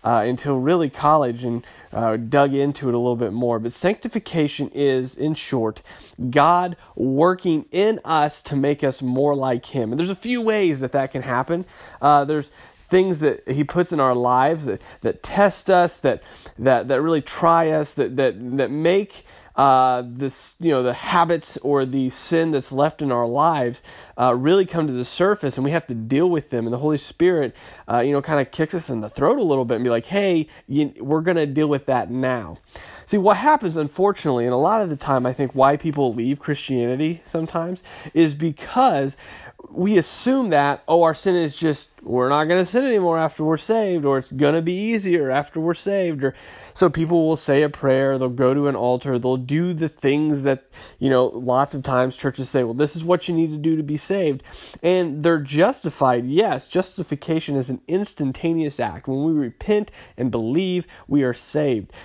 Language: English